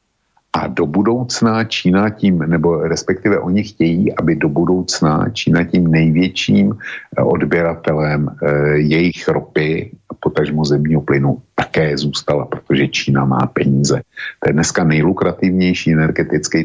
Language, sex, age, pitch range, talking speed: Slovak, male, 50-69, 75-95 Hz, 115 wpm